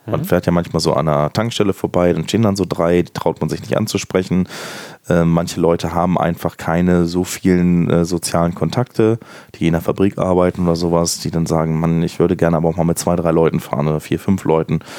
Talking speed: 225 wpm